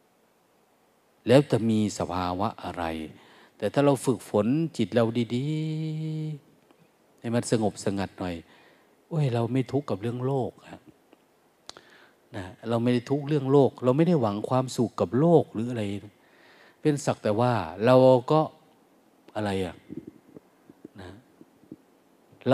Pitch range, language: 95-130 Hz, Thai